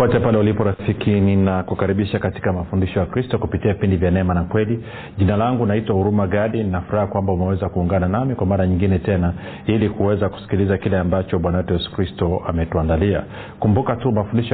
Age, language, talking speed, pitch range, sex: 40-59, Swahili, 180 wpm, 95-110 Hz, male